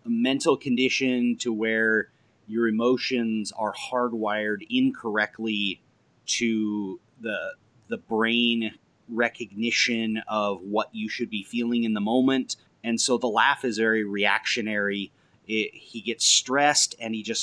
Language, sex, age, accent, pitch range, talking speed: English, male, 30-49, American, 110-140 Hz, 130 wpm